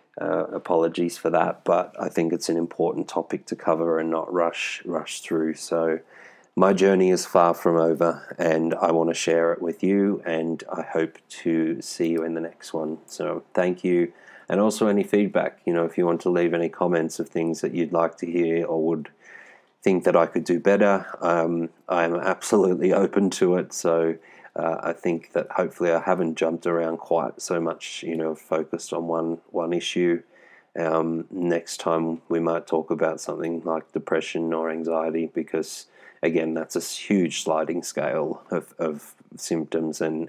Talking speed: 185 wpm